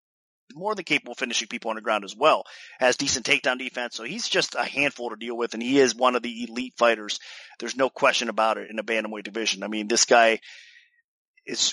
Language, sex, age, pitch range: English, male, 30-49, 115-140 Hz